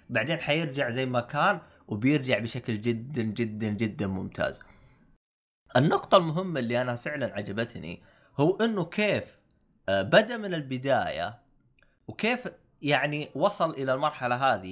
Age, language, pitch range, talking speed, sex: 20-39, Arabic, 120-160 Hz, 120 wpm, male